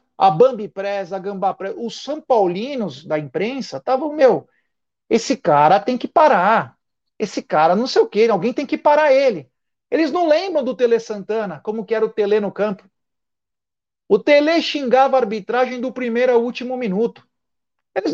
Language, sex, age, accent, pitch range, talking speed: Portuguese, male, 40-59, Brazilian, 210-275 Hz, 175 wpm